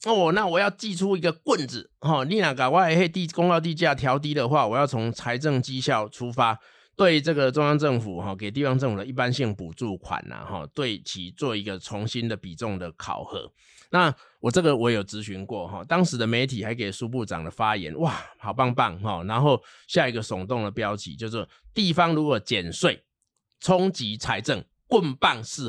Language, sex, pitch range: Chinese, male, 110-155 Hz